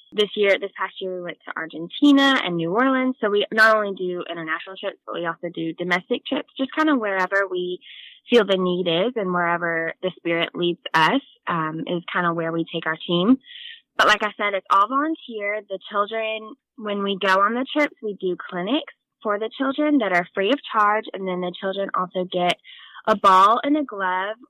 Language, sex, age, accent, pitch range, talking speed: English, female, 10-29, American, 175-220 Hz, 210 wpm